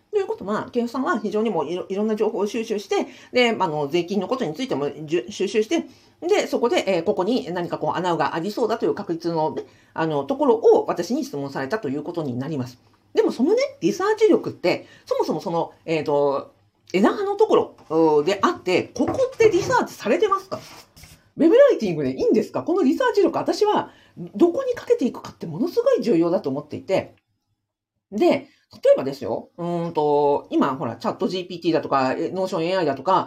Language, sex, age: Japanese, female, 40-59